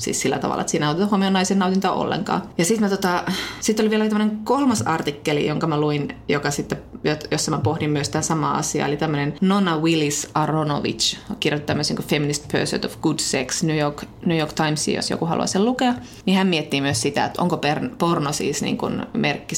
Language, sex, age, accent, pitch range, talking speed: Finnish, female, 20-39, native, 145-180 Hz, 195 wpm